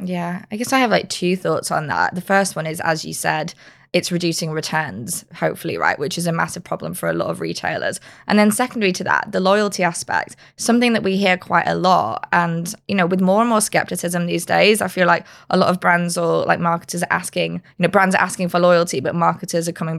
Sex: female